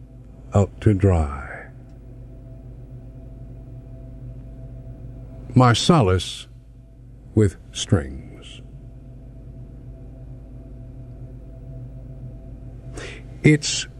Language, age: English, 60-79